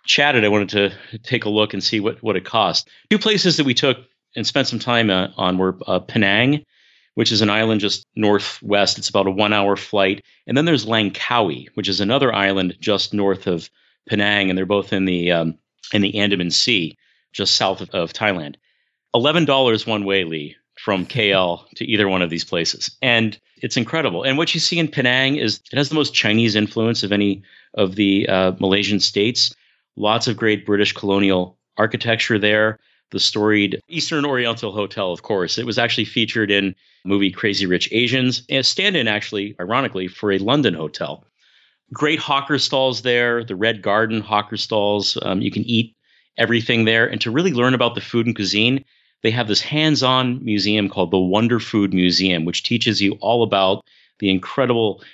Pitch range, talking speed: 100-120 Hz, 190 wpm